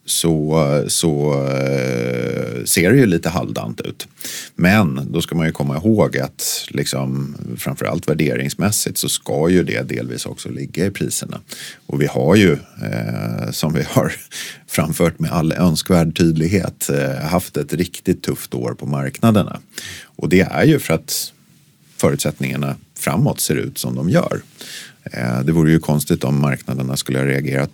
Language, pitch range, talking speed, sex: Swedish, 65-85 Hz, 145 wpm, male